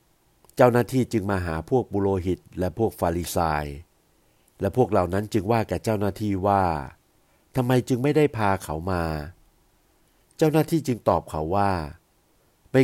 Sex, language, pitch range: male, Thai, 90-120 Hz